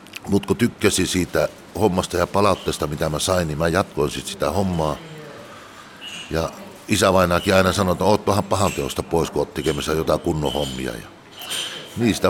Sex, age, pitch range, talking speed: male, 60-79, 80-100 Hz, 155 wpm